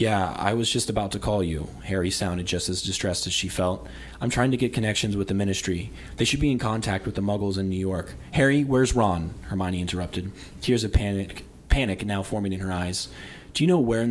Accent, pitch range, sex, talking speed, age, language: American, 90-105 Hz, male, 230 wpm, 20-39, English